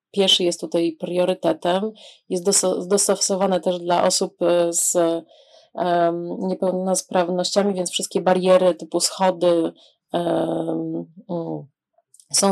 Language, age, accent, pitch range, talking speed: Polish, 30-49, native, 190-225 Hz, 80 wpm